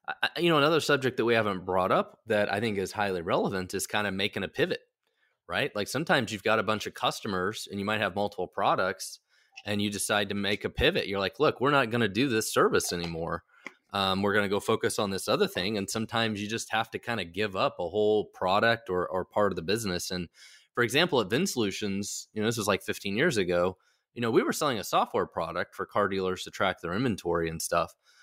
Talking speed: 245 wpm